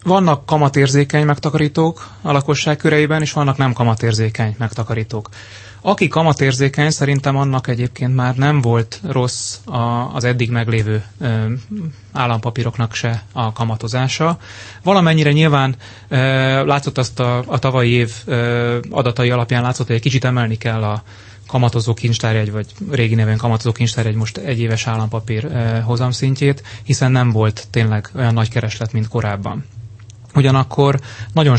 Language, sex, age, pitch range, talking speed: Hungarian, male, 30-49, 110-130 Hz, 135 wpm